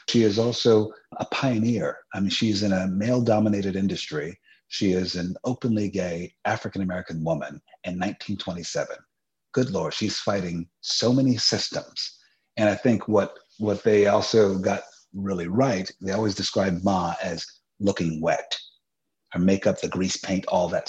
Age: 40-59